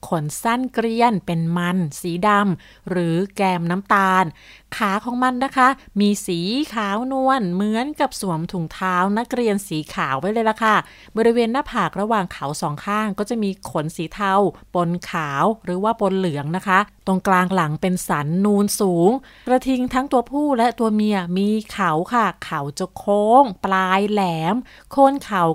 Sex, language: female, Thai